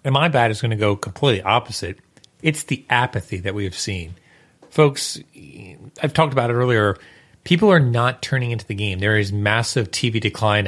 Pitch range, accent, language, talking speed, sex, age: 100-135 Hz, American, English, 190 wpm, male, 30-49